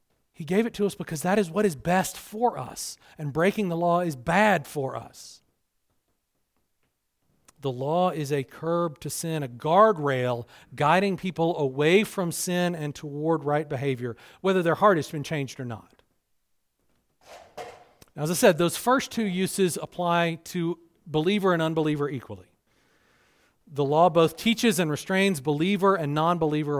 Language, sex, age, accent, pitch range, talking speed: English, male, 40-59, American, 150-195 Hz, 155 wpm